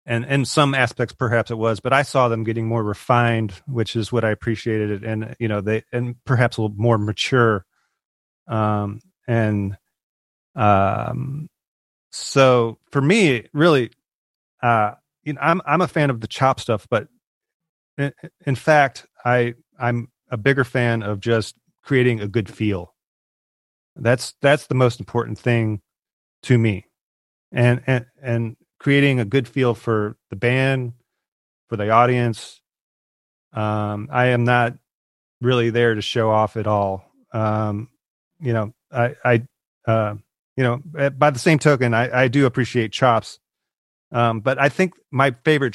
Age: 30-49